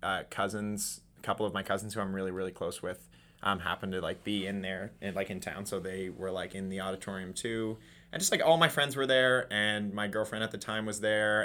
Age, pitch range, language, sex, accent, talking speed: 20-39, 95-110 Hz, English, male, American, 245 wpm